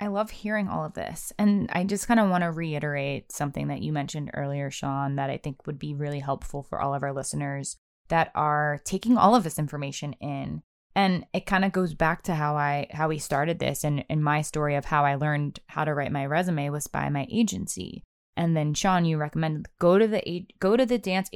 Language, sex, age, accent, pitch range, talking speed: English, female, 20-39, American, 150-200 Hz, 230 wpm